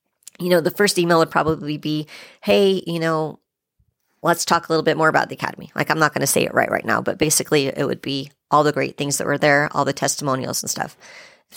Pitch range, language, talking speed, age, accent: 160-185 Hz, English, 250 wpm, 40-59, American